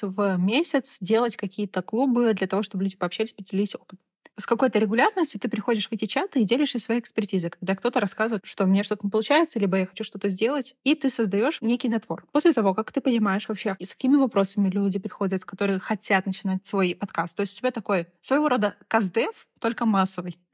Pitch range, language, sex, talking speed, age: 195-245 Hz, Russian, female, 200 wpm, 20-39